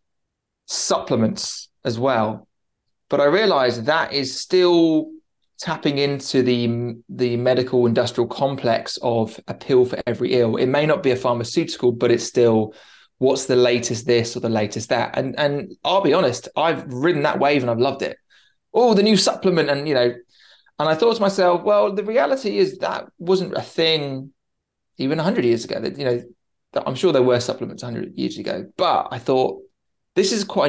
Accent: British